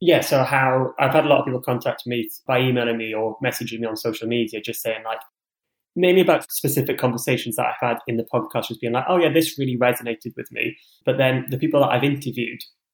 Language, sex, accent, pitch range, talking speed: English, male, British, 115-135 Hz, 230 wpm